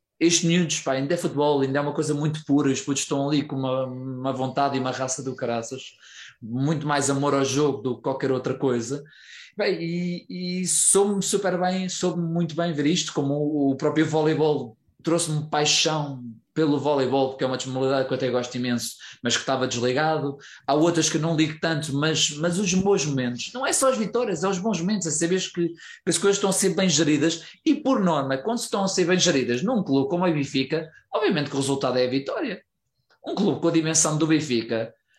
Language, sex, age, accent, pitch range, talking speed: Portuguese, male, 20-39, Portuguese, 145-195 Hz, 220 wpm